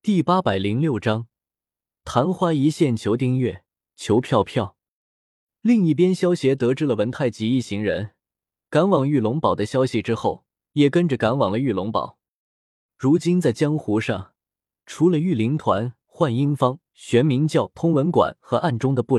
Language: Chinese